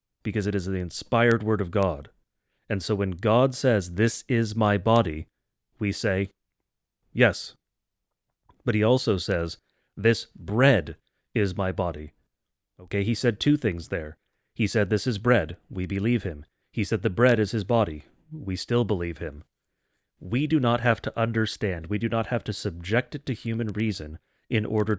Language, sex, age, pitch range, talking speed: English, male, 30-49, 95-120 Hz, 175 wpm